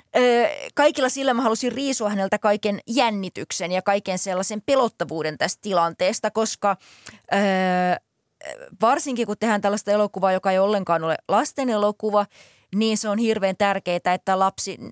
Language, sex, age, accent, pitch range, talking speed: Finnish, female, 20-39, native, 185-225 Hz, 135 wpm